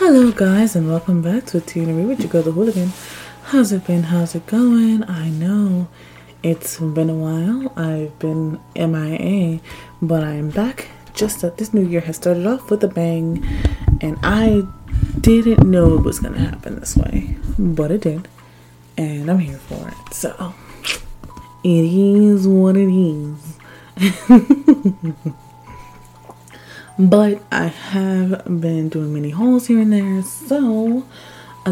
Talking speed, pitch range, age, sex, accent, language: 145 wpm, 150-190 Hz, 20-39, female, American, English